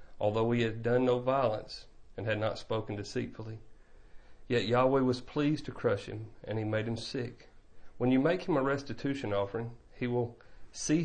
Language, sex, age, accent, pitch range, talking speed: English, male, 40-59, American, 105-120 Hz, 180 wpm